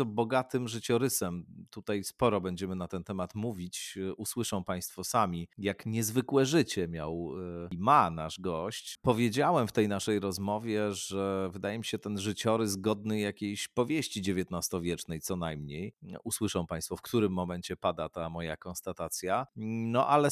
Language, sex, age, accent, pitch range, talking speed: Polish, male, 40-59, native, 95-120 Hz, 140 wpm